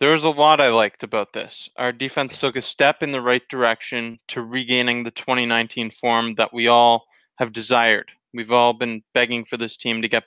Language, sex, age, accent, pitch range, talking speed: English, male, 20-39, American, 120-145 Hz, 210 wpm